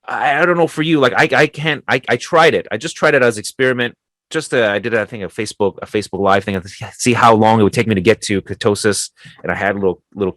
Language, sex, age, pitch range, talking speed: English, male, 30-49, 90-120 Hz, 290 wpm